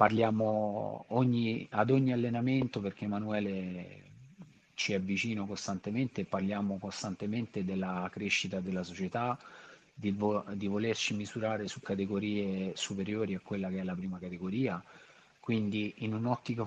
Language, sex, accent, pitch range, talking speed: Italian, male, native, 95-115 Hz, 120 wpm